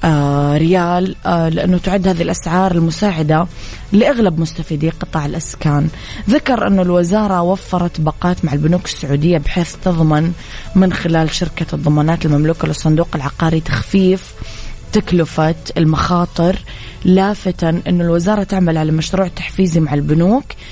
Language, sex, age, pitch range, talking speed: English, female, 20-39, 160-180 Hz, 115 wpm